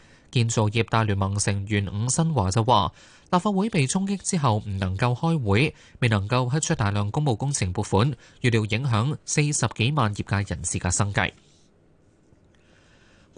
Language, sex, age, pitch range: Chinese, male, 20-39, 105-140 Hz